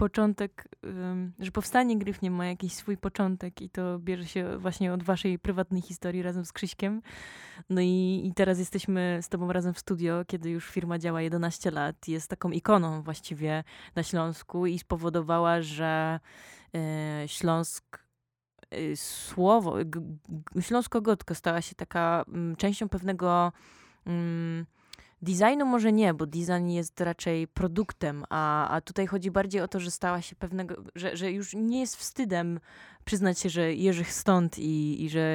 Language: Polish